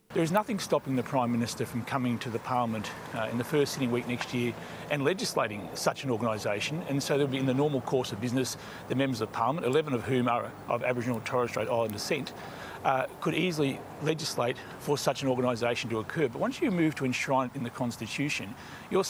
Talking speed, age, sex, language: 225 wpm, 40-59, male, Tamil